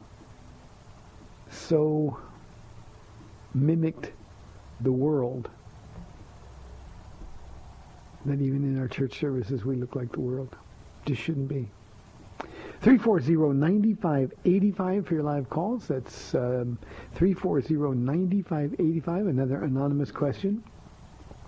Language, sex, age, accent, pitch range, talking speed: English, male, 60-79, American, 120-155 Hz, 80 wpm